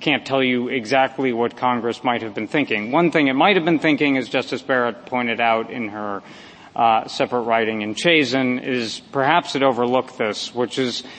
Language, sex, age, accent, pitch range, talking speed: English, male, 40-59, American, 120-150 Hz, 195 wpm